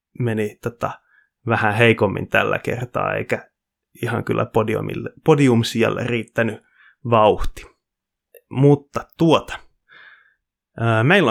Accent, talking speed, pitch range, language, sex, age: native, 85 wpm, 105-130 Hz, Finnish, male, 20-39